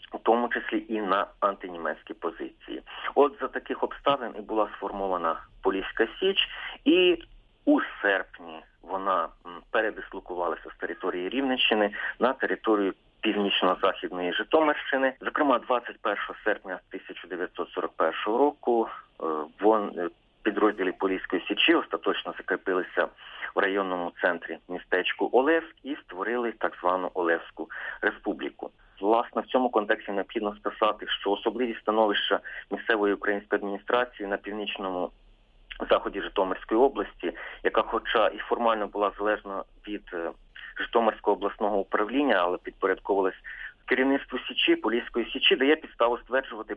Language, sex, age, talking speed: Ukrainian, male, 40-59, 110 wpm